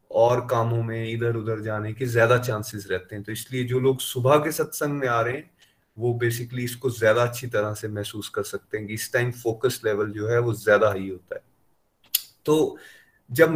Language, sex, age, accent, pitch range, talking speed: Hindi, male, 30-49, native, 115-135 Hz, 205 wpm